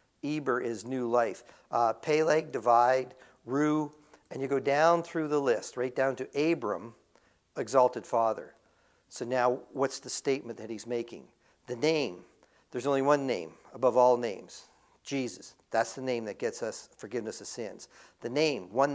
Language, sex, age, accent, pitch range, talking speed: English, male, 50-69, American, 120-150 Hz, 160 wpm